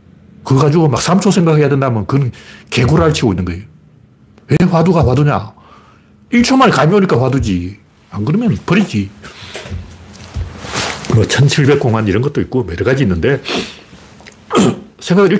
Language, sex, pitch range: Korean, male, 105-145 Hz